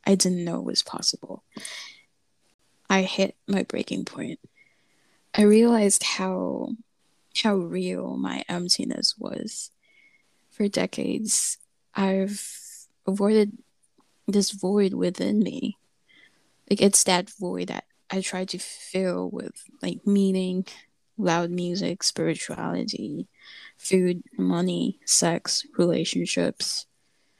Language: English